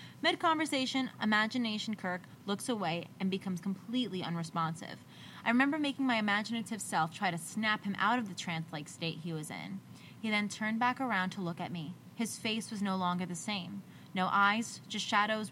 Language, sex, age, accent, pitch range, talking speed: English, female, 20-39, American, 180-230 Hz, 180 wpm